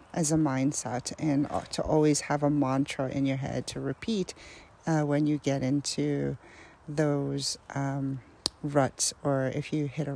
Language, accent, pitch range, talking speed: English, American, 140-160 Hz, 160 wpm